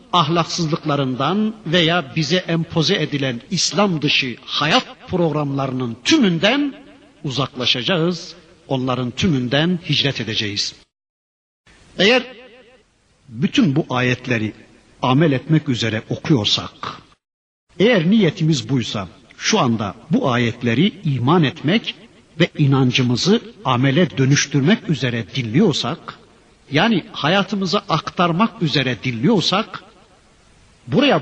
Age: 60-79